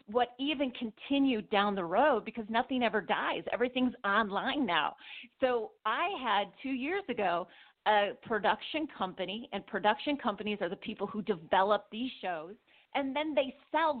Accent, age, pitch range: American, 40-59, 195-245 Hz